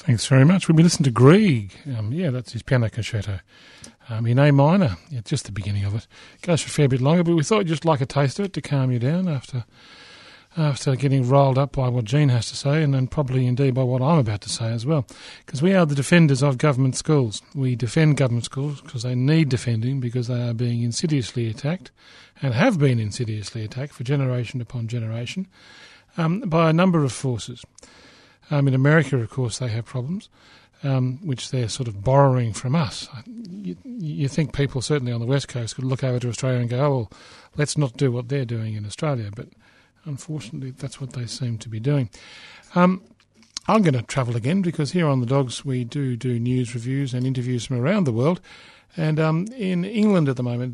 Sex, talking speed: male, 220 wpm